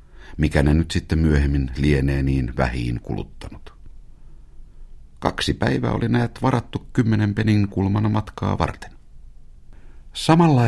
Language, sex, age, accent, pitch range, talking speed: Finnish, male, 60-79, native, 70-105 Hz, 110 wpm